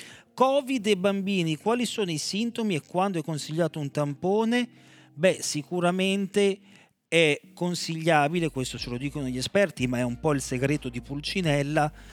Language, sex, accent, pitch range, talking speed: Italian, male, native, 120-155 Hz, 155 wpm